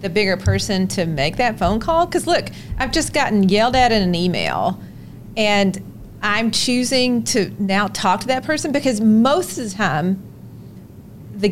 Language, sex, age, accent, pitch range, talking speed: English, female, 40-59, American, 185-225 Hz, 170 wpm